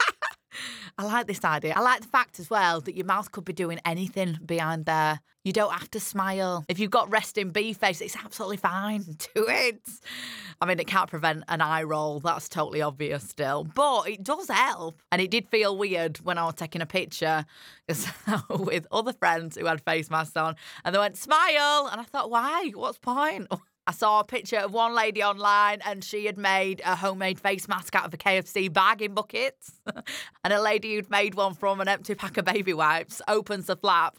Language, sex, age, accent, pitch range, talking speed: English, female, 20-39, British, 165-210 Hz, 210 wpm